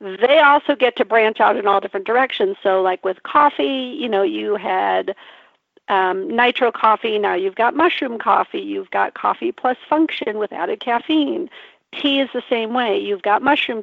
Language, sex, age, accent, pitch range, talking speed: English, female, 50-69, American, 210-290 Hz, 180 wpm